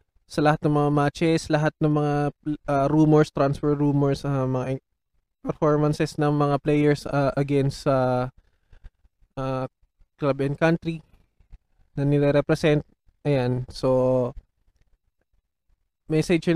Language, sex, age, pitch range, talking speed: Filipino, male, 20-39, 135-155 Hz, 110 wpm